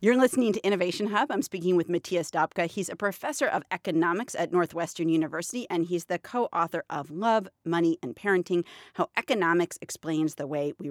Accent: American